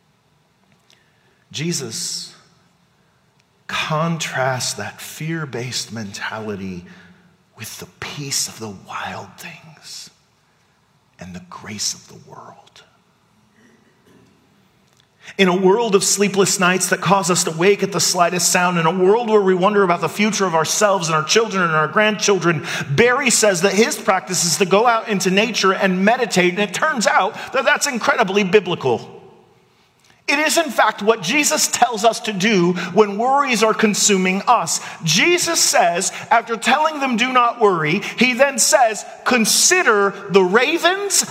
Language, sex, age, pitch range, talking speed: English, male, 40-59, 175-235 Hz, 145 wpm